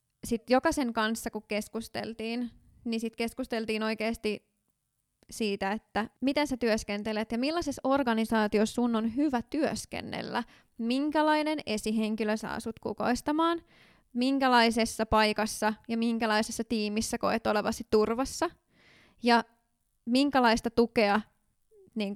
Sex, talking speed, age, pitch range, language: female, 100 wpm, 20-39, 215-240 Hz, Finnish